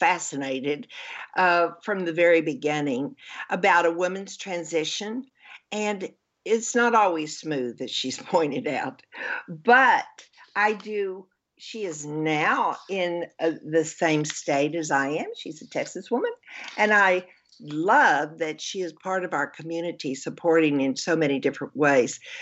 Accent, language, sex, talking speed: American, English, female, 140 wpm